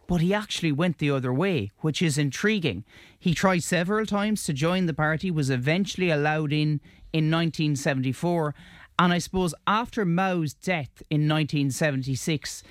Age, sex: 30-49, male